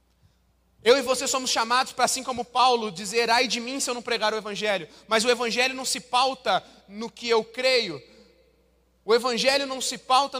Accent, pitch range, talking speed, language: Brazilian, 185-250 Hz, 195 wpm, Portuguese